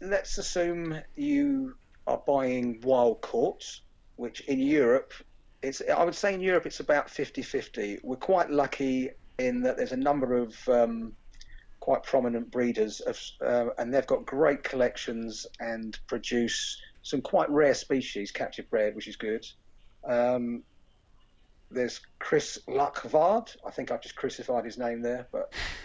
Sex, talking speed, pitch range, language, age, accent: male, 140 wpm, 115-145 Hz, English, 40-59, British